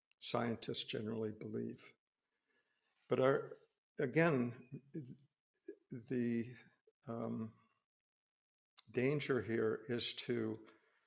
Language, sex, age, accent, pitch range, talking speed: English, male, 60-79, American, 115-130 Hz, 60 wpm